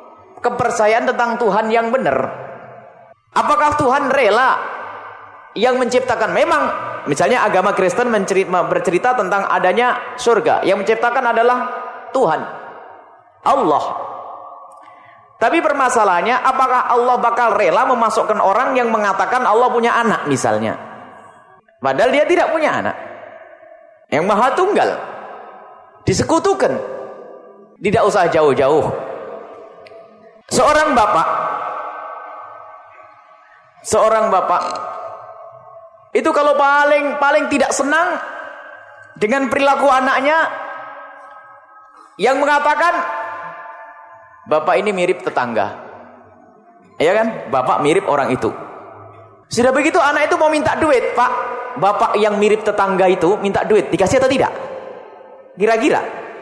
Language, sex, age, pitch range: English, male, 30-49, 220-315 Hz